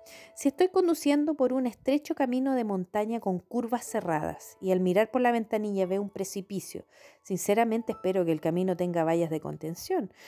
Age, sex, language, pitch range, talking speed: 40-59, female, Spanish, 170-240 Hz, 175 wpm